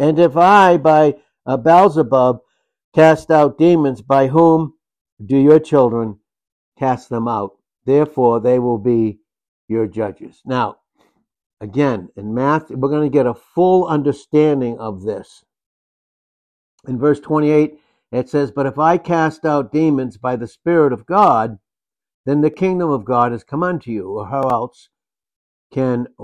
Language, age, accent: English, 60-79, American